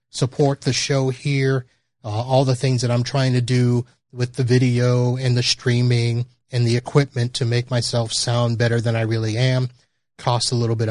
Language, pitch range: English, 115-130 Hz